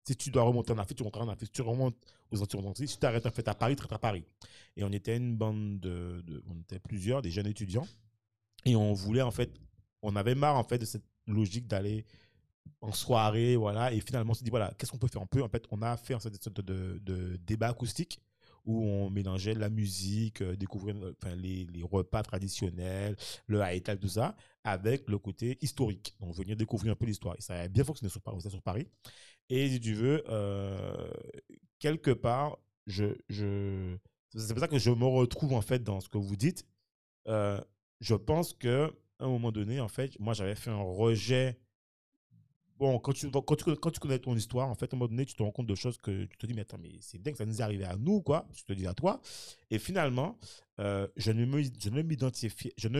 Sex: male